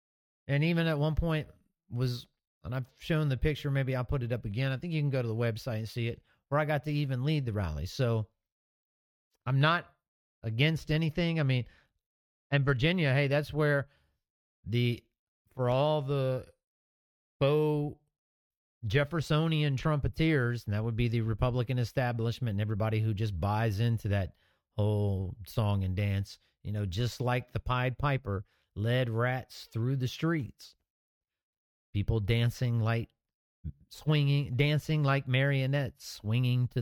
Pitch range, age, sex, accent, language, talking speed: 110-150 Hz, 40-59, male, American, English, 155 wpm